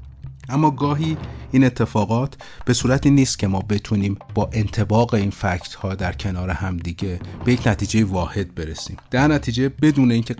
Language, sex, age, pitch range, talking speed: Persian, male, 30-49, 95-120 Hz, 155 wpm